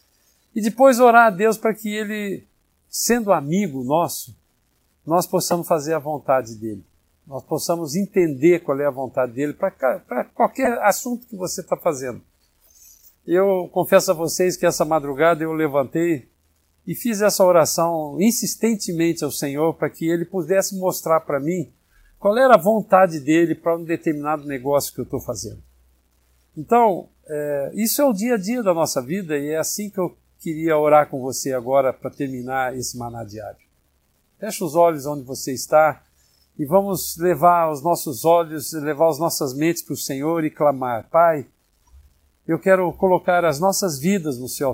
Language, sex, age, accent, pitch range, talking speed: Portuguese, male, 60-79, Brazilian, 130-180 Hz, 165 wpm